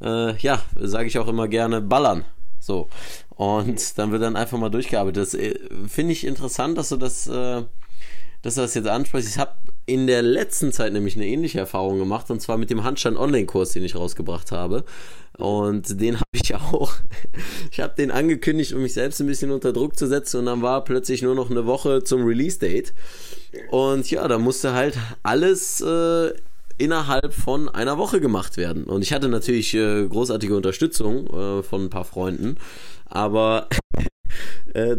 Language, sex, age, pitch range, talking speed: German, male, 20-39, 105-130 Hz, 175 wpm